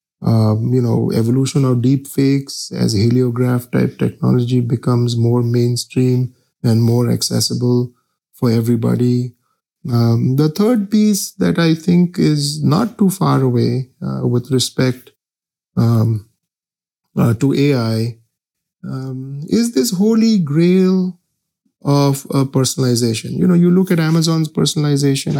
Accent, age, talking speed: Indian, 50-69, 125 wpm